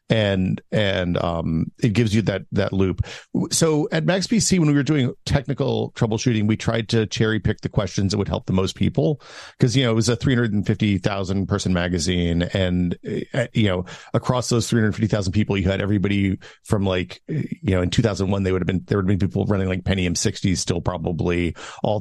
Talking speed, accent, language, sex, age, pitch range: 200 wpm, American, English, male, 40-59, 90-115 Hz